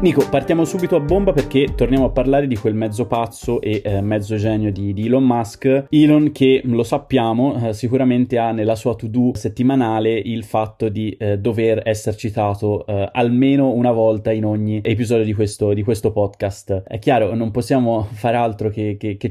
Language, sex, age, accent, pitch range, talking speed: Italian, male, 20-39, native, 105-125 Hz, 185 wpm